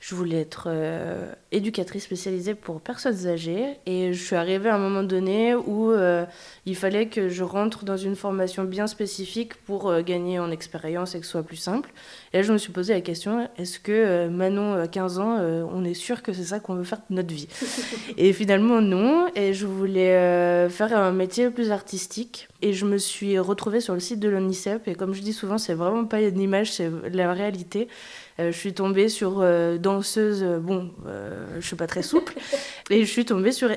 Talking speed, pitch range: 215 wpm, 175-210 Hz